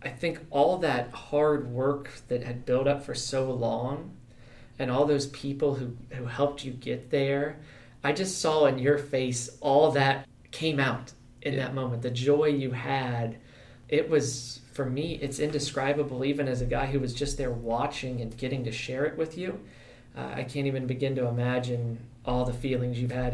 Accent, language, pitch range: American, English, 120-140 Hz